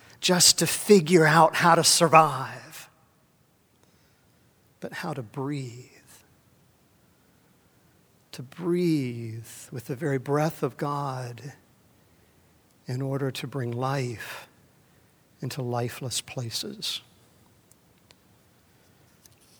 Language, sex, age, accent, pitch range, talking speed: English, male, 50-69, American, 115-140 Hz, 85 wpm